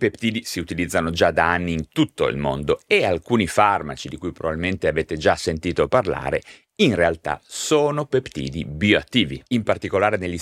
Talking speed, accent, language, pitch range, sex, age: 160 wpm, native, Italian, 90-140 Hz, male, 30-49